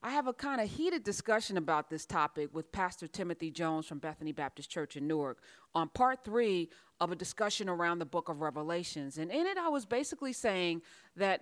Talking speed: 205 wpm